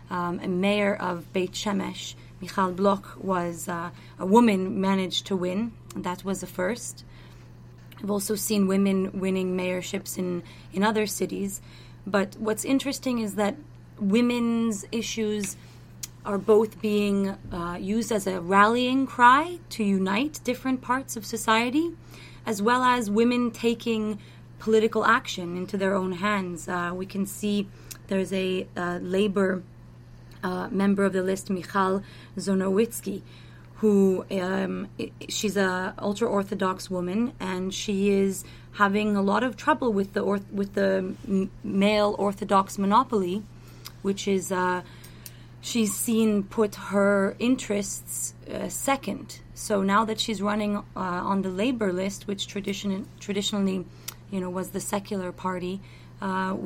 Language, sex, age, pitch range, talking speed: English, female, 30-49, 185-210 Hz, 140 wpm